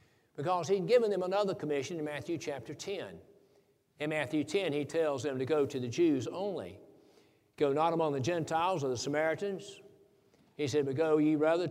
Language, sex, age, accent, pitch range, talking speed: English, male, 60-79, American, 145-180 Hz, 185 wpm